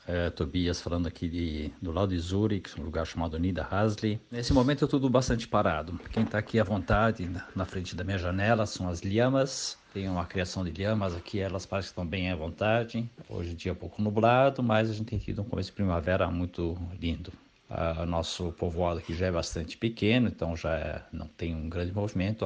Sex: male